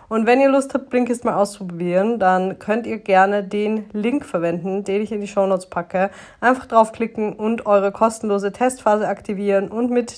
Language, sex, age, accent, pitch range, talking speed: German, female, 20-39, German, 190-225 Hz, 185 wpm